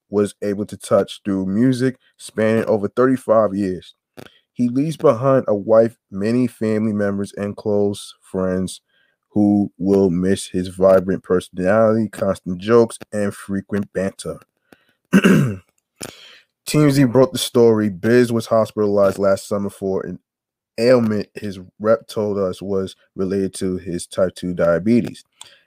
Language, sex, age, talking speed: English, male, 20-39, 130 wpm